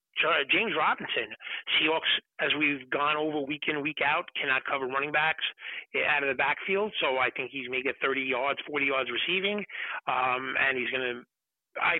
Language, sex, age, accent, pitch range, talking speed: English, male, 40-59, American, 135-180 Hz, 170 wpm